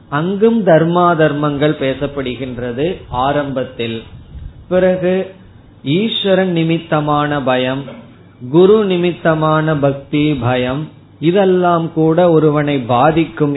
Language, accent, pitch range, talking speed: Tamil, native, 125-160 Hz, 75 wpm